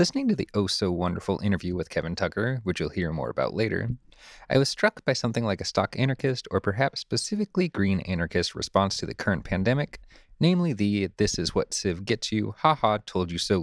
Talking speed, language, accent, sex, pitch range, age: 160 wpm, English, American, male, 95-135 Hz, 30-49